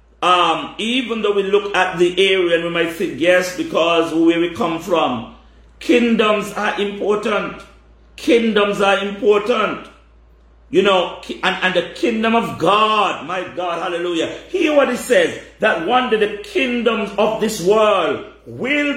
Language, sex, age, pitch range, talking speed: English, male, 50-69, 175-225 Hz, 150 wpm